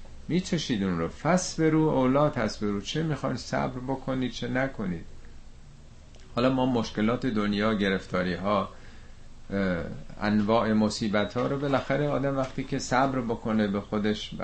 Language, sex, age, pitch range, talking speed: Persian, male, 50-69, 105-135 Hz, 135 wpm